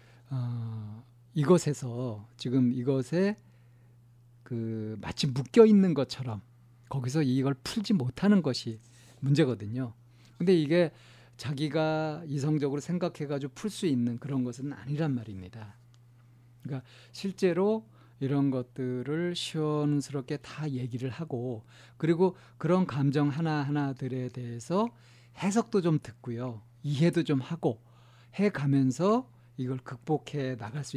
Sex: male